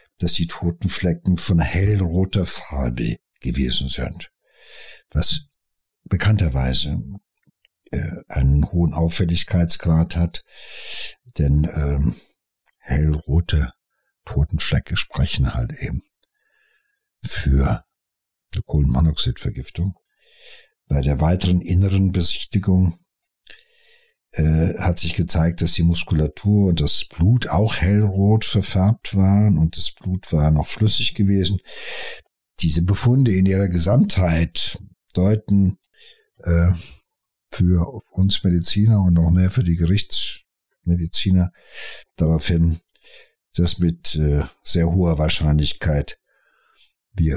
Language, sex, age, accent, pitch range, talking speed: German, male, 60-79, German, 80-100 Hz, 90 wpm